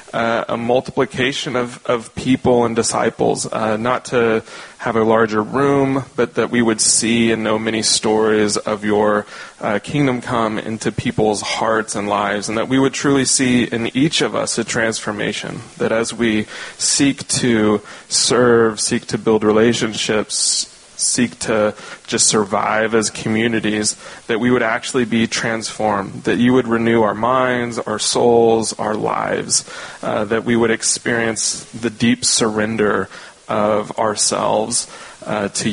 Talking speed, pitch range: 150 wpm, 110-120 Hz